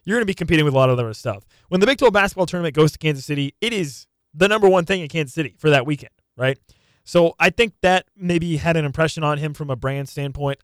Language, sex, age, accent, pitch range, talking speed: English, male, 20-39, American, 140-175 Hz, 270 wpm